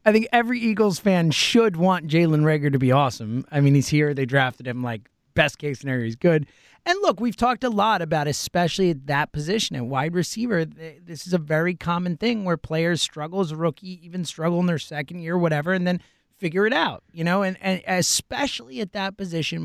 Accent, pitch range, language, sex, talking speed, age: American, 160-210 Hz, English, male, 220 wpm, 30-49